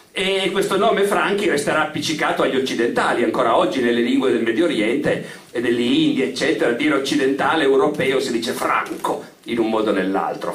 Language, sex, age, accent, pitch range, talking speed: Italian, male, 50-69, native, 165-250 Hz, 165 wpm